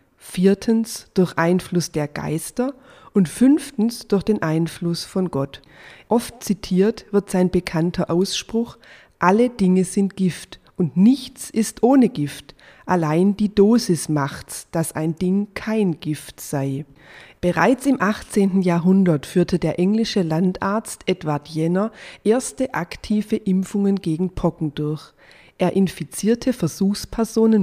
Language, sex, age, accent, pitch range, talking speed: German, female, 30-49, German, 165-210 Hz, 120 wpm